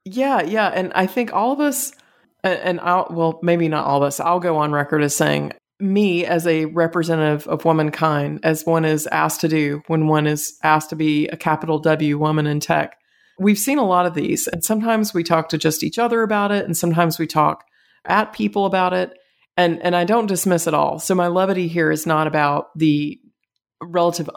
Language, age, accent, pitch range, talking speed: English, 30-49, American, 155-180 Hz, 210 wpm